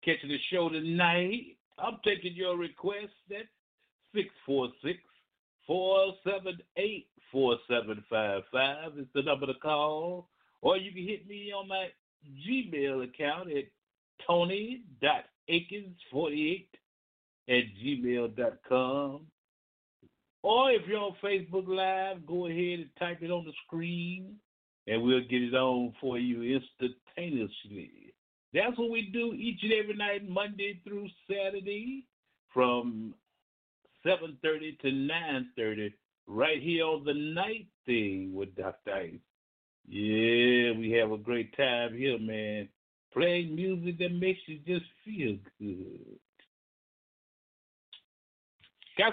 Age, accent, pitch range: 60-79, American, 125-195 Hz